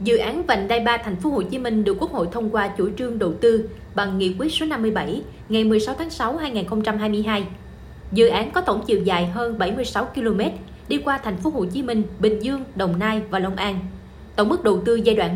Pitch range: 195-240 Hz